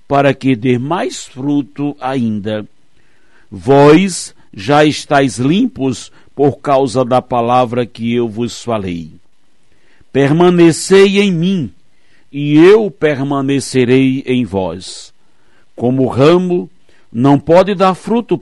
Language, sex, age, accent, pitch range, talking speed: Portuguese, male, 60-79, Brazilian, 120-175 Hz, 105 wpm